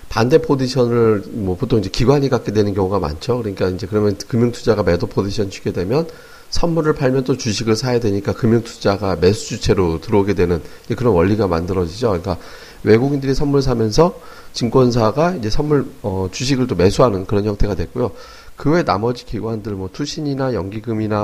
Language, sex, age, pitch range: Korean, male, 40-59, 100-130 Hz